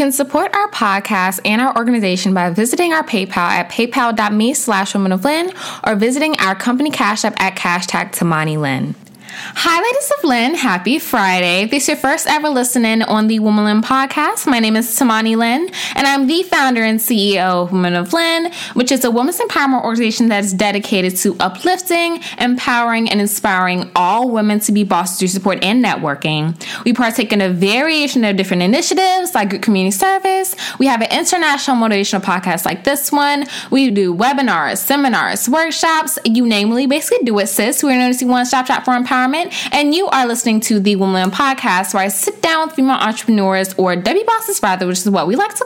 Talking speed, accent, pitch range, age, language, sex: 190 wpm, American, 195-280 Hz, 10-29, English, female